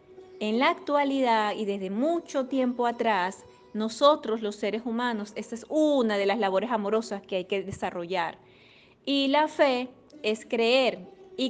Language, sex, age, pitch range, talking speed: Spanish, female, 30-49, 220-275 Hz, 150 wpm